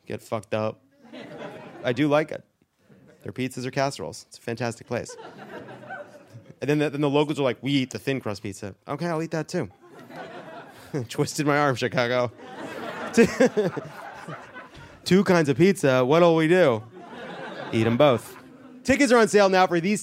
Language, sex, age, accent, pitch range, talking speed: English, male, 30-49, American, 125-175 Hz, 160 wpm